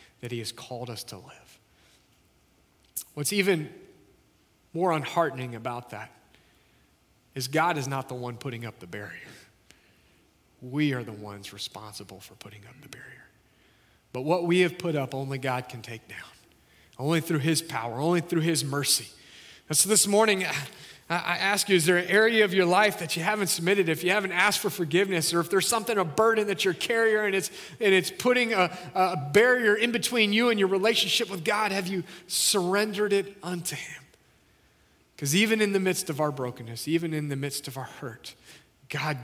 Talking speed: 190 wpm